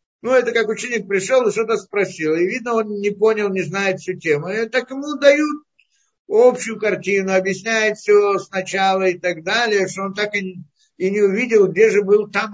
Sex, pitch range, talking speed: male, 190-250 Hz, 180 wpm